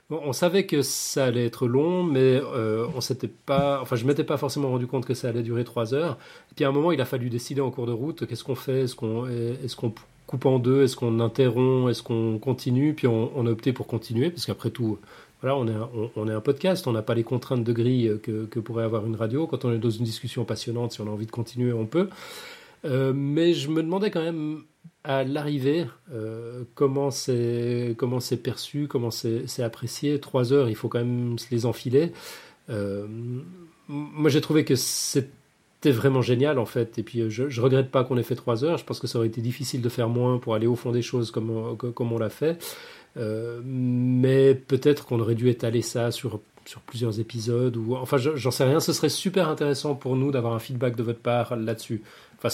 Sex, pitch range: male, 115-140 Hz